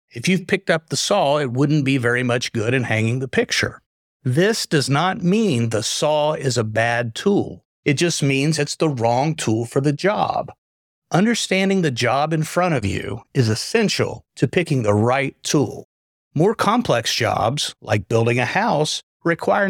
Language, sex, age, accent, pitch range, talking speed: English, male, 50-69, American, 120-165 Hz, 175 wpm